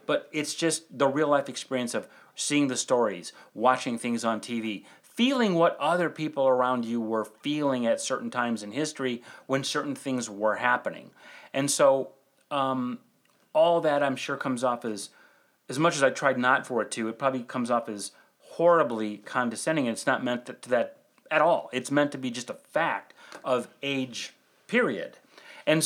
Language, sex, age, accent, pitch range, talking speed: English, male, 30-49, American, 125-170 Hz, 180 wpm